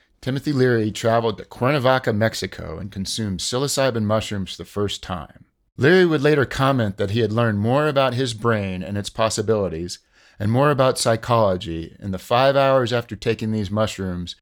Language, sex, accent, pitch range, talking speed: English, male, American, 100-130 Hz, 170 wpm